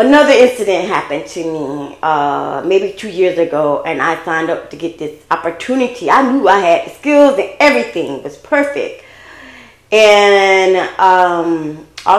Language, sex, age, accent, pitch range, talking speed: English, female, 20-39, American, 175-275 Hz, 150 wpm